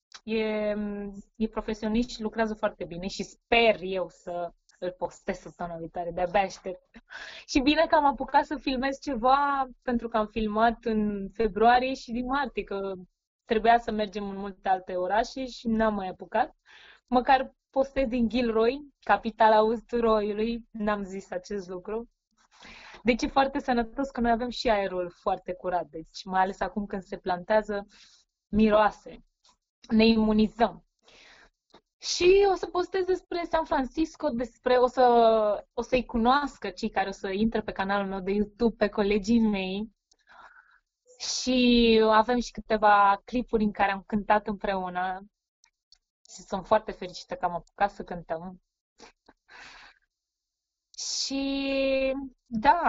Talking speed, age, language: 140 wpm, 20-39, Romanian